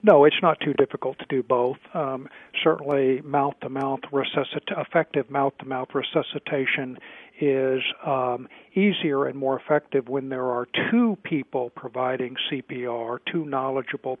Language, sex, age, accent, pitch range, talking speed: English, male, 50-69, American, 130-155 Hz, 140 wpm